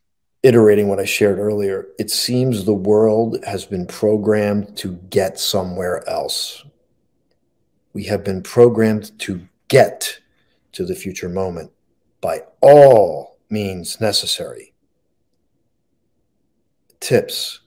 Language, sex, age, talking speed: English, male, 50-69, 105 wpm